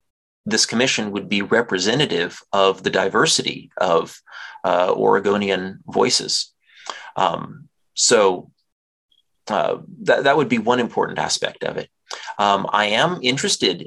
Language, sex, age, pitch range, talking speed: English, male, 30-49, 95-115 Hz, 120 wpm